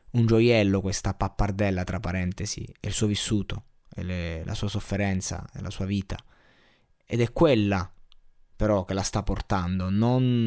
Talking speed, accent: 155 wpm, native